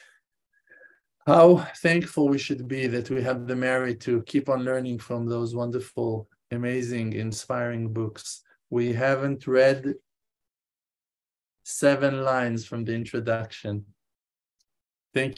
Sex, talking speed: male, 115 wpm